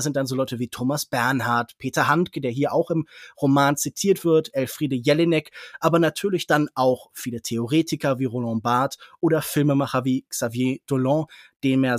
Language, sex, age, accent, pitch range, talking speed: German, male, 20-39, German, 135-185 Hz, 170 wpm